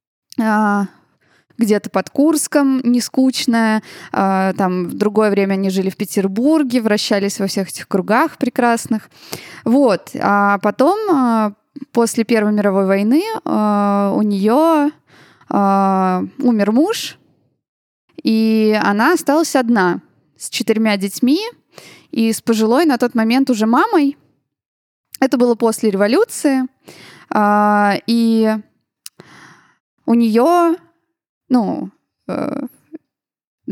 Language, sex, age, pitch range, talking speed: Russian, female, 20-39, 195-260 Hz, 95 wpm